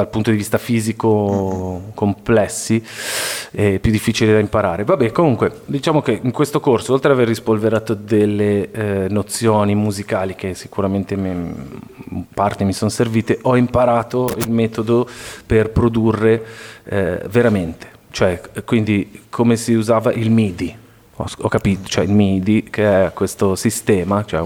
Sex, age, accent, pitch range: male, 30-49, native, 100-120 Hz